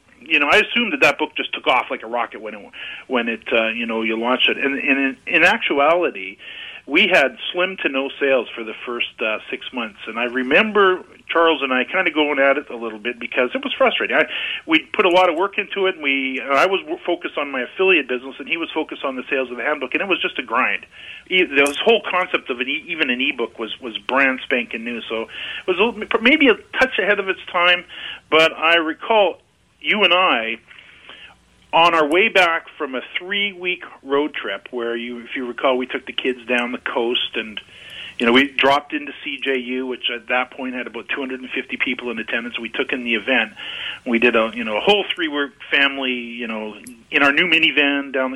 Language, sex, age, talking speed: English, male, 40-59, 235 wpm